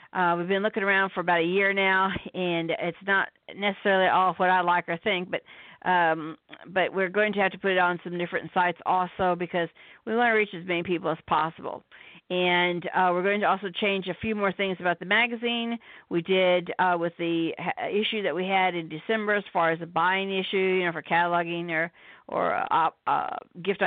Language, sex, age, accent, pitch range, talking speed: English, female, 50-69, American, 180-210 Hz, 215 wpm